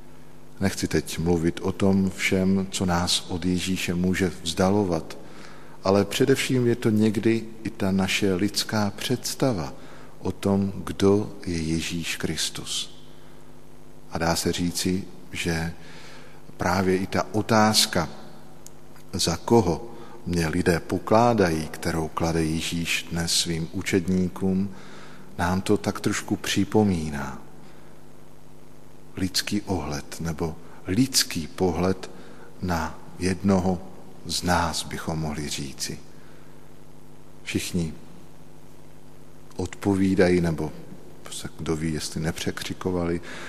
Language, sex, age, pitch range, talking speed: Slovak, male, 50-69, 85-95 Hz, 100 wpm